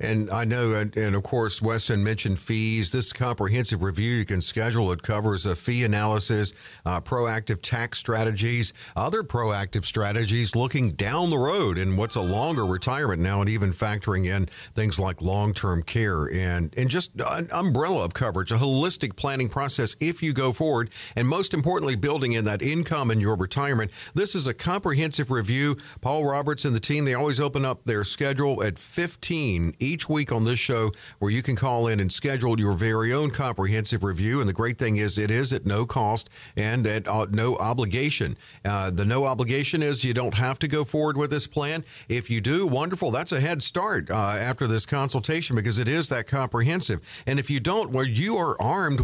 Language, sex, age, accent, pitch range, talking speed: English, male, 50-69, American, 110-140 Hz, 195 wpm